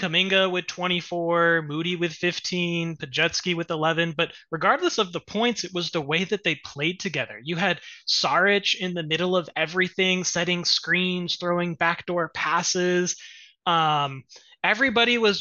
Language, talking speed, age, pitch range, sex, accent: English, 150 wpm, 20-39, 165-190 Hz, male, American